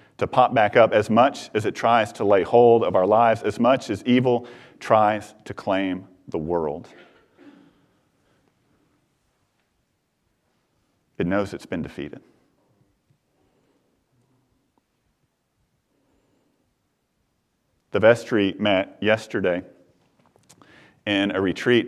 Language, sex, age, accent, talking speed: English, male, 40-59, American, 100 wpm